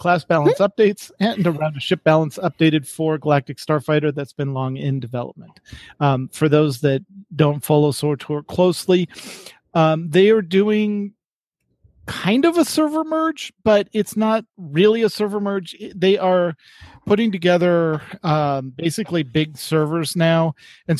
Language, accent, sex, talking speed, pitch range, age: English, American, male, 150 wpm, 145-175 Hz, 40-59